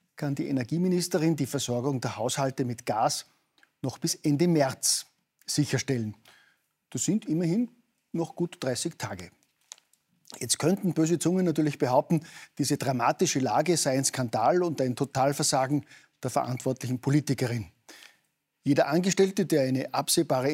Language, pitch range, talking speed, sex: German, 130-160 Hz, 130 wpm, male